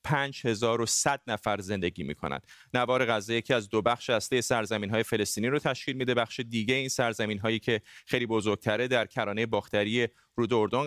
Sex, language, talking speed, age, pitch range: male, Persian, 160 wpm, 30-49, 110-140 Hz